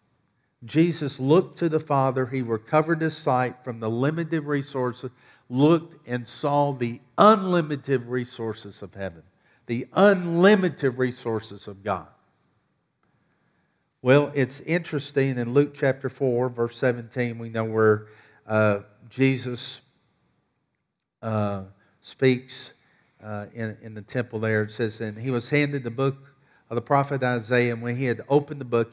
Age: 50-69